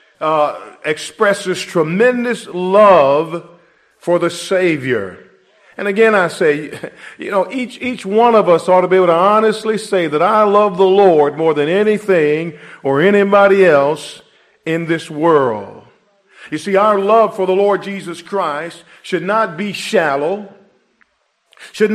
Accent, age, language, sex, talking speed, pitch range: American, 50-69, English, male, 145 wpm, 155-205 Hz